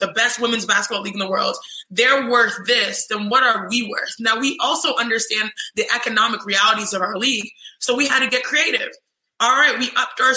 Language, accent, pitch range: English, American, 215-260 Hz